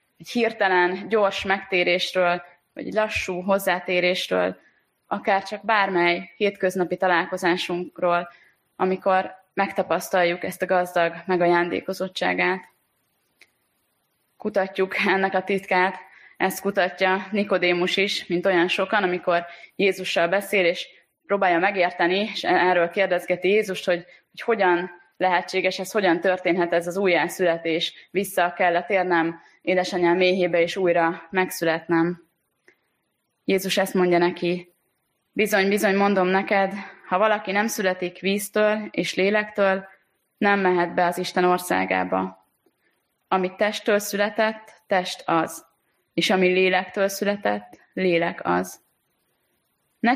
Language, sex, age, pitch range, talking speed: Hungarian, female, 20-39, 175-195 Hz, 110 wpm